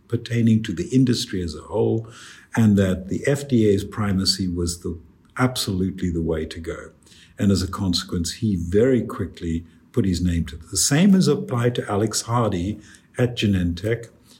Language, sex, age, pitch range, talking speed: English, male, 50-69, 90-120 Hz, 165 wpm